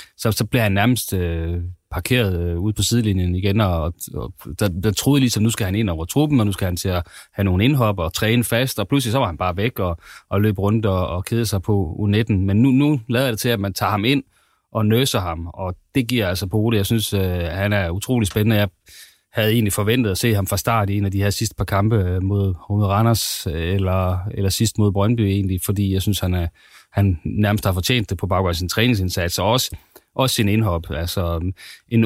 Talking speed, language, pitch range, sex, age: 240 wpm, Danish, 95-115 Hz, male, 30-49